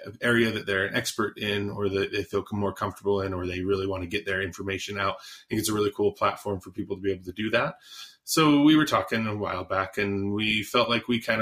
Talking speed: 265 wpm